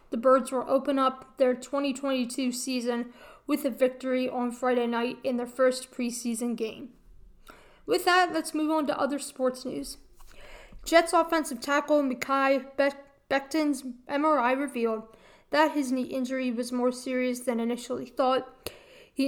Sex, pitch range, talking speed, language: female, 245-280 Hz, 145 wpm, English